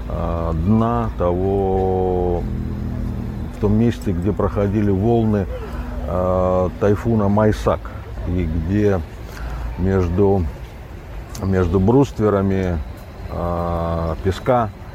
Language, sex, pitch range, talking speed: Russian, male, 85-110 Hz, 65 wpm